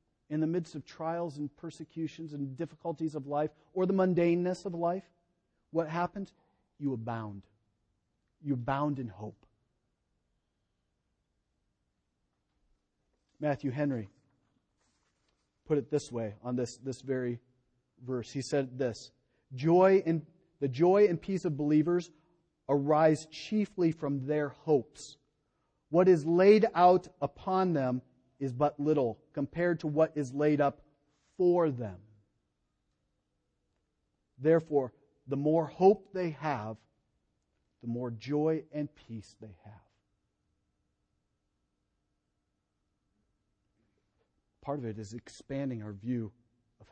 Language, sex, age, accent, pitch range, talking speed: English, male, 40-59, American, 120-160 Hz, 115 wpm